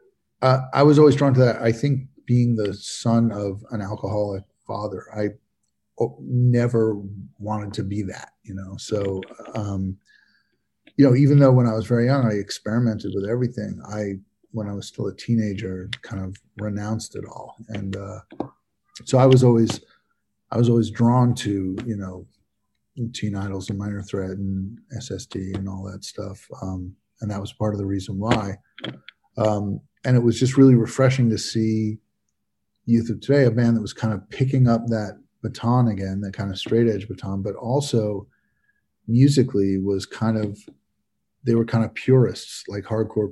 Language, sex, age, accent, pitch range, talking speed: English, male, 50-69, American, 100-120 Hz, 175 wpm